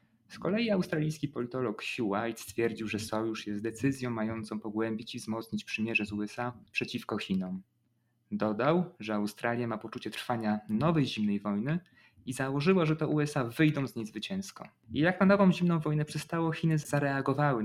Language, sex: Polish, male